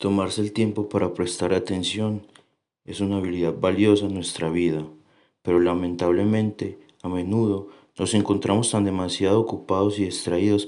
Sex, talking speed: male, 135 wpm